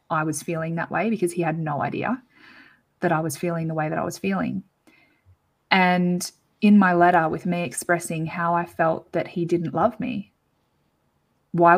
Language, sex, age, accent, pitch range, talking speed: English, female, 20-39, Australian, 170-205 Hz, 185 wpm